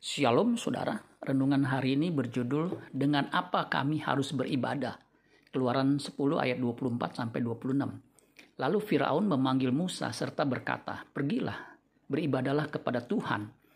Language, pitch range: Indonesian, 130-145 Hz